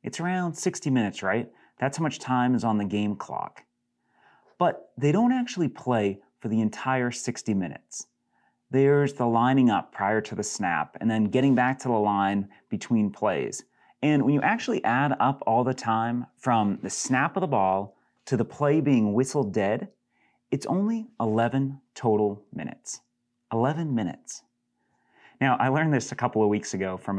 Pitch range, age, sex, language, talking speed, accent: 105-140 Hz, 30-49, male, English, 175 wpm, American